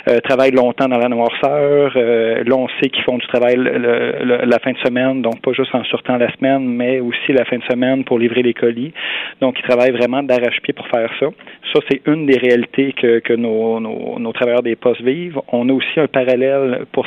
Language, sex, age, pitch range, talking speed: French, male, 40-59, 120-135 Hz, 230 wpm